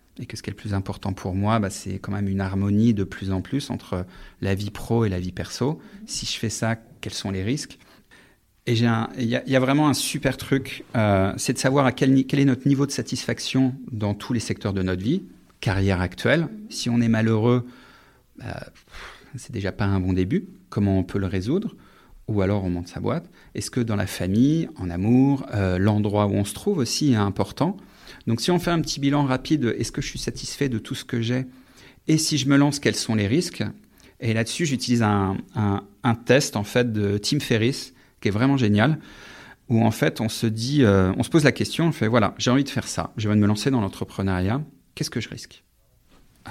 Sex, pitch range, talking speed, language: male, 100-135 Hz, 230 wpm, French